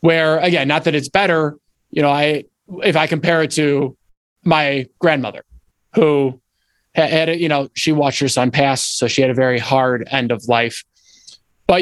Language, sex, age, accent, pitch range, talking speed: English, male, 20-39, American, 130-170 Hz, 190 wpm